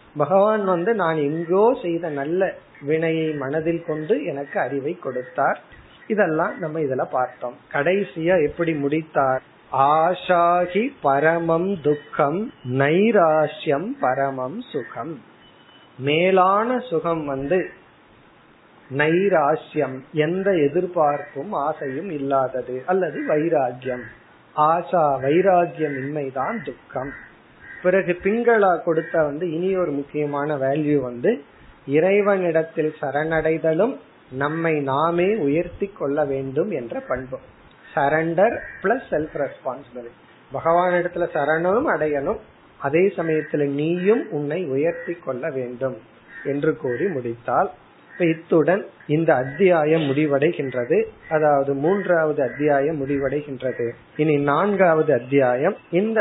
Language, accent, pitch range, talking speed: Tamil, native, 140-175 Hz, 85 wpm